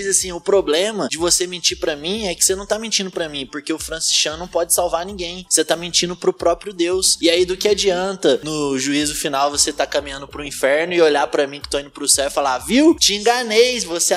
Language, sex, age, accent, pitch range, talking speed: Portuguese, male, 20-39, Brazilian, 160-235 Hz, 240 wpm